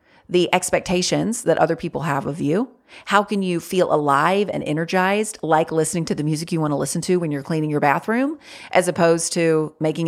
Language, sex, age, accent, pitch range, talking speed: English, female, 30-49, American, 160-205 Hz, 200 wpm